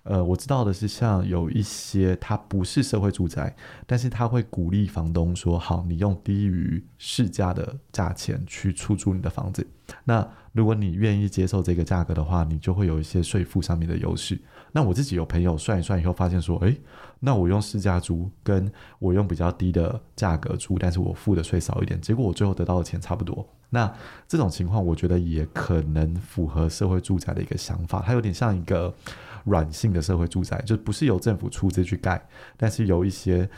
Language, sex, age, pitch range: Chinese, male, 20-39, 90-110 Hz